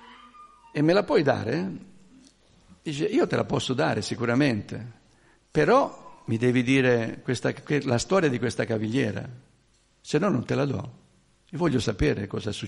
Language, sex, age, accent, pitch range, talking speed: Italian, male, 60-79, native, 120-150 Hz, 140 wpm